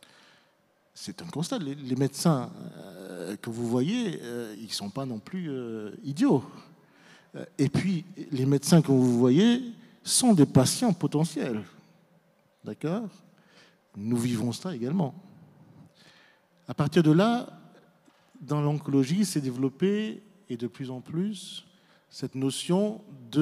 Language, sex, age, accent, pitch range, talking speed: French, male, 50-69, French, 130-185 Hz, 120 wpm